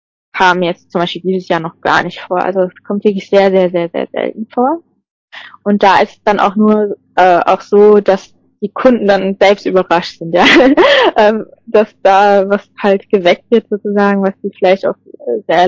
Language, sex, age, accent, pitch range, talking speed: German, female, 20-39, German, 185-215 Hz, 195 wpm